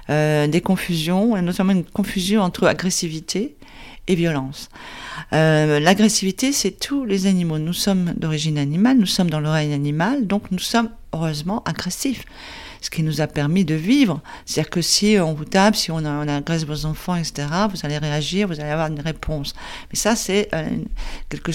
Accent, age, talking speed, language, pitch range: French, 50-69, 175 wpm, French, 170-230 Hz